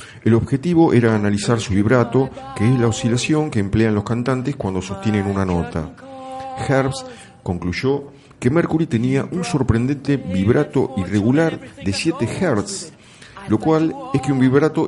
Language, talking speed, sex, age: Spanish, 145 wpm, male, 50-69